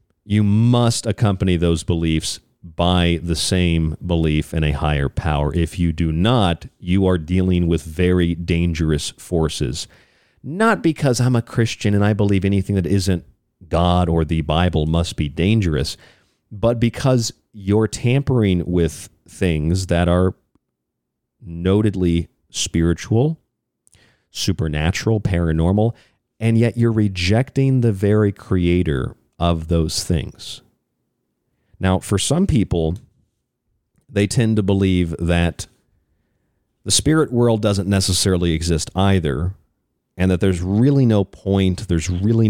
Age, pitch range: 40-59, 85-105 Hz